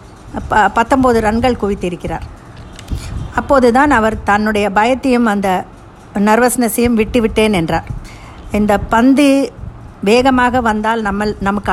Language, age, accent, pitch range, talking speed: Tamil, 50-69, native, 205-250 Hz, 95 wpm